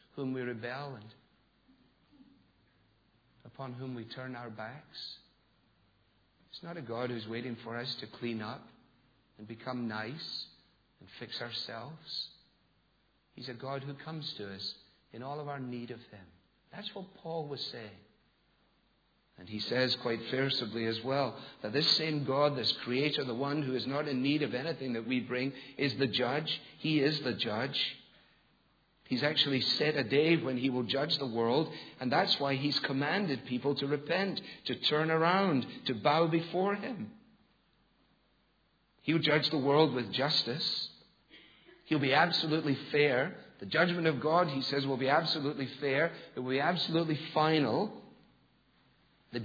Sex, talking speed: male, 160 wpm